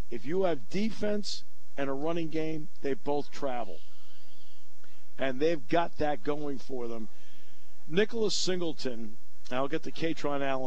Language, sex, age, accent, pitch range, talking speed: English, male, 50-69, American, 120-165 Hz, 145 wpm